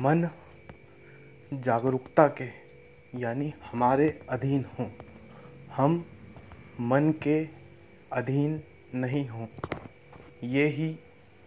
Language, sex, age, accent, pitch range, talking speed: Hindi, male, 20-39, native, 125-155 Hz, 80 wpm